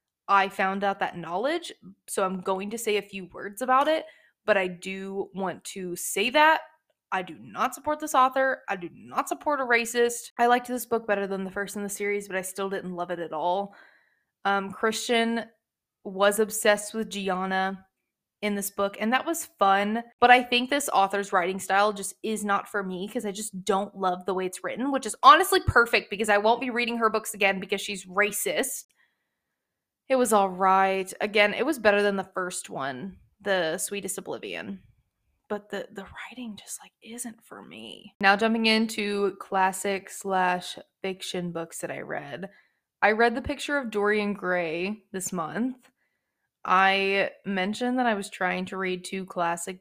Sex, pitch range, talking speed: female, 190-235 Hz, 185 wpm